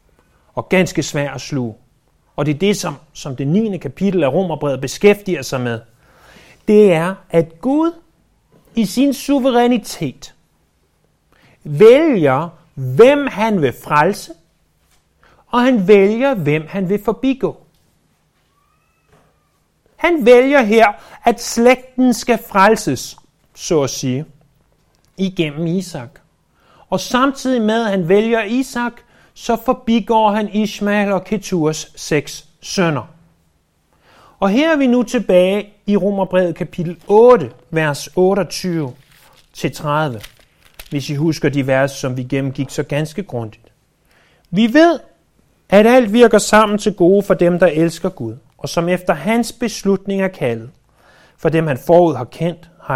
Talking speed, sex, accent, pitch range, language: 130 wpm, male, native, 145-215 Hz, Danish